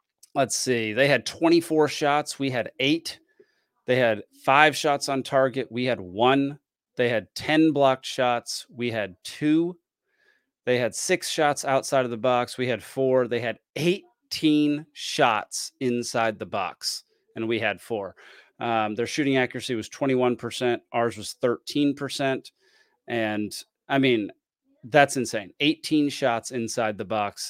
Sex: male